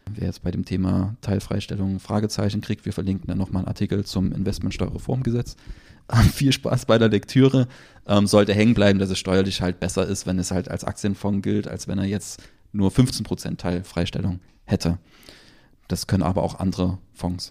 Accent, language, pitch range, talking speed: German, German, 90-105 Hz, 180 wpm